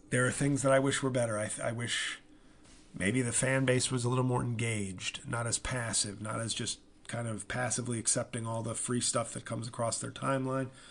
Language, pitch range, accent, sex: English, 115-135 Hz, American, male